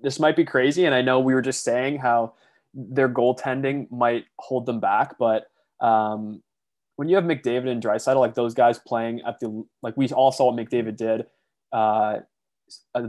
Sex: male